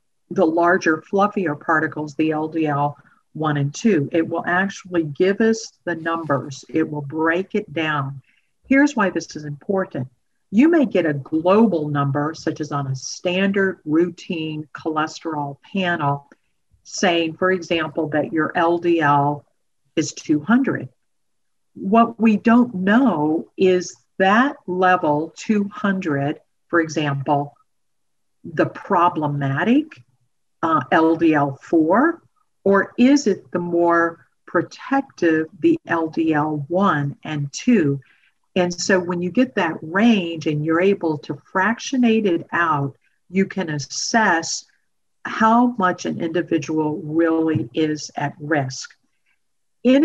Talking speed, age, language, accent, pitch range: 120 wpm, 50-69, English, American, 150-200 Hz